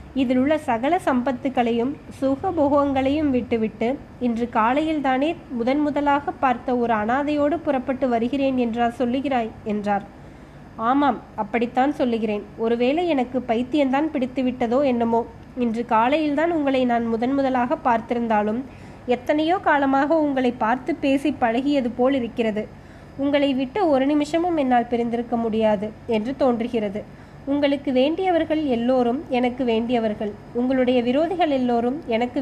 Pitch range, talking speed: 235-280 Hz, 105 wpm